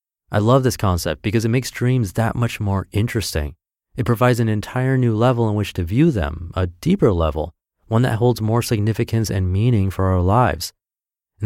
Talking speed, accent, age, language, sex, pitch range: 195 wpm, American, 30-49, English, male, 90-120 Hz